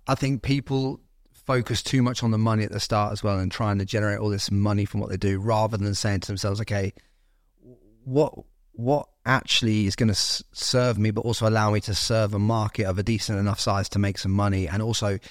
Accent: British